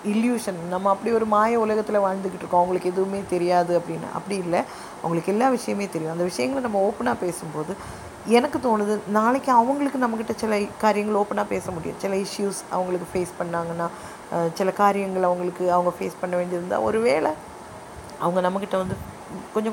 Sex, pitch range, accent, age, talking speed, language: female, 180-225 Hz, native, 20-39, 160 wpm, Tamil